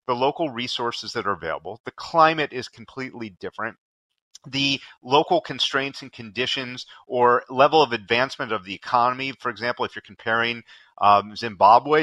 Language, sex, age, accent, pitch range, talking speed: English, male, 30-49, American, 120-150 Hz, 150 wpm